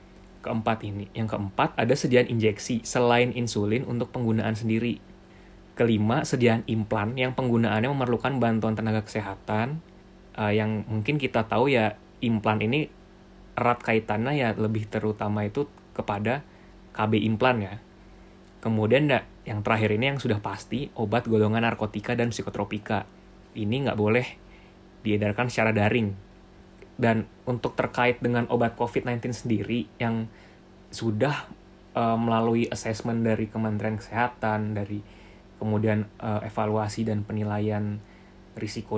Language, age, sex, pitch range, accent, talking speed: Indonesian, 20-39, male, 105-115 Hz, native, 125 wpm